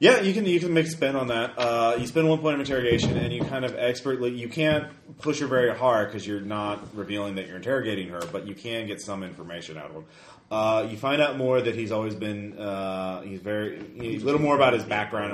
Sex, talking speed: male, 250 wpm